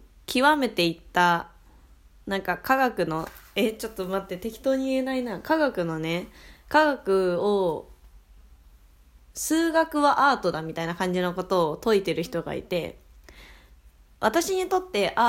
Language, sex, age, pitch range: Japanese, female, 20-39, 175-230 Hz